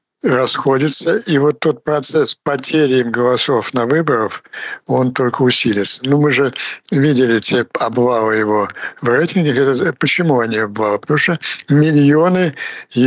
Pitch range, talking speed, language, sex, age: 115-145 Hz, 130 wpm, Ukrainian, male, 60-79